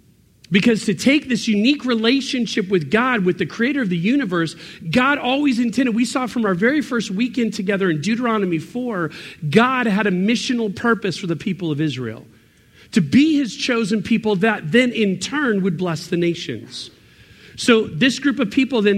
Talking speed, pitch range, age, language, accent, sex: 180 wpm, 175-245 Hz, 40-59, English, American, male